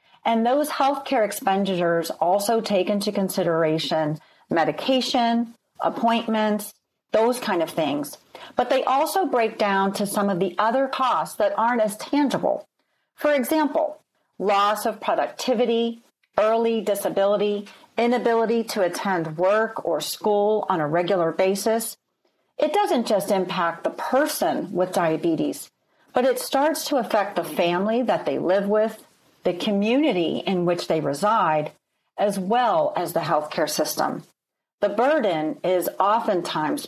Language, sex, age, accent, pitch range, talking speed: English, female, 40-59, American, 185-245 Hz, 130 wpm